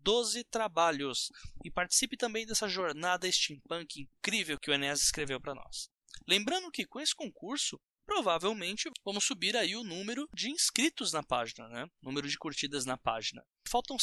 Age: 20-39